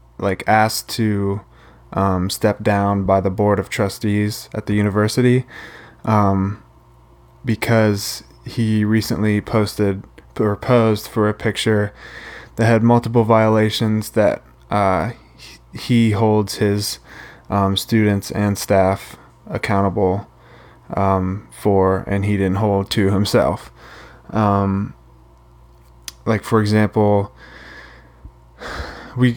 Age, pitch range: 20-39, 95-110 Hz